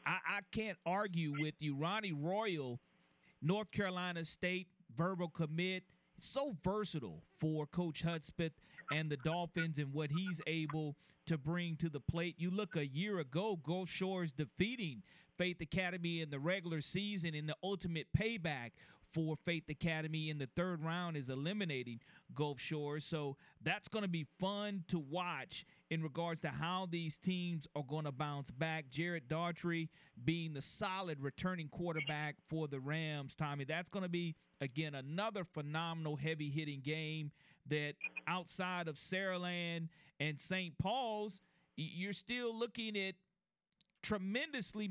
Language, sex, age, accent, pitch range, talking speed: English, male, 40-59, American, 155-190 Hz, 145 wpm